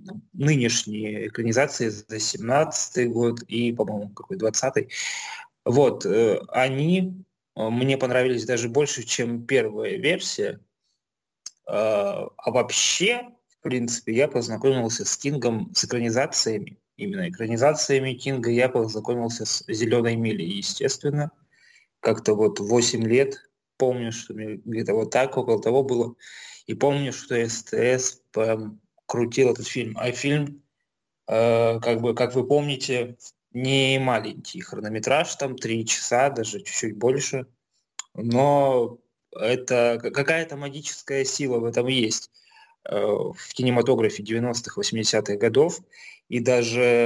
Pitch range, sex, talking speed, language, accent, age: 115-140 Hz, male, 115 wpm, Russian, native, 20-39